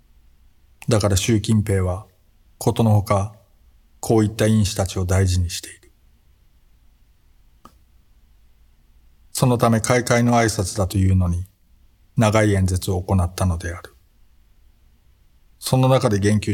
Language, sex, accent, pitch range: Japanese, male, native, 80-105 Hz